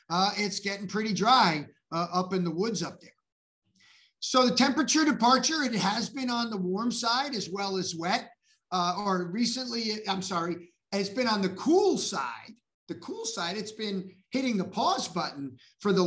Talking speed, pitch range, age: 185 wpm, 190-250 Hz, 50-69